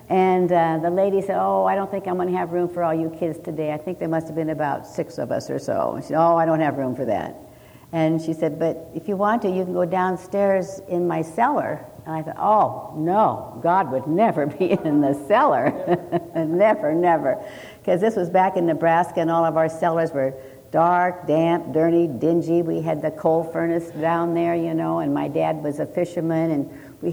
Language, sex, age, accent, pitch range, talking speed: English, female, 60-79, American, 160-185 Hz, 230 wpm